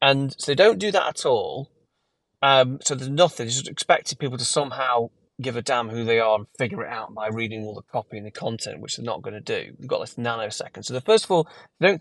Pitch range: 115-160 Hz